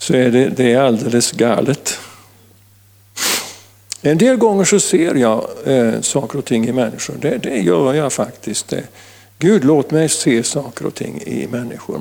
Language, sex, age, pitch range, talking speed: Swedish, male, 50-69, 100-140 Hz, 170 wpm